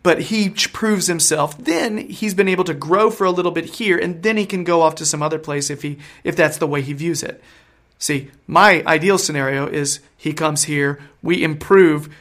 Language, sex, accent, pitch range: English, male, American, 150-190 Hz